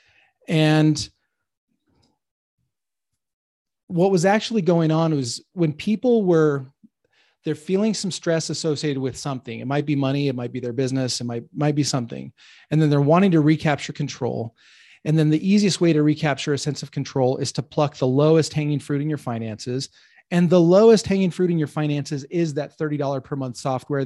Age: 30-49